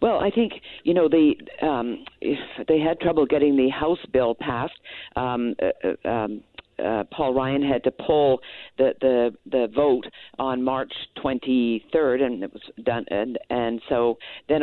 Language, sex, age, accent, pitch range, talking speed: English, female, 50-69, American, 125-150 Hz, 160 wpm